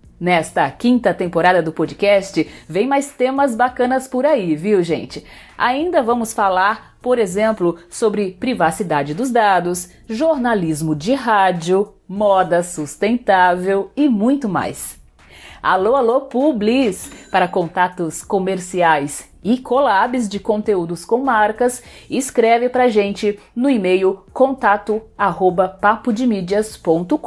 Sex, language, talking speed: female, Portuguese, 110 wpm